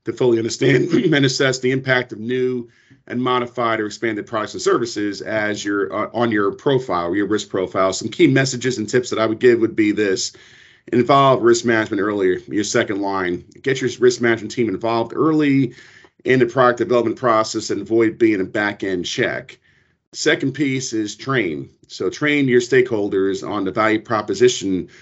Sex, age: male, 40-59